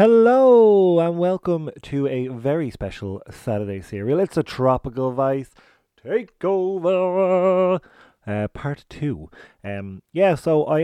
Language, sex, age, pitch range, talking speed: English, male, 30-49, 105-145 Hz, 115 wpm